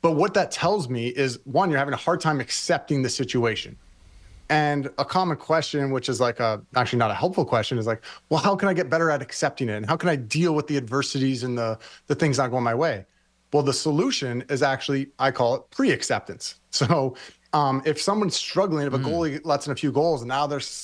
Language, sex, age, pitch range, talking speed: English, male, 30-49, 125-160 Hz, 230 wpm